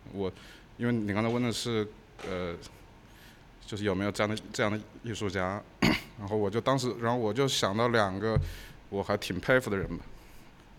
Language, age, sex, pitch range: Chinese, 20-39, male, 95-115 Hz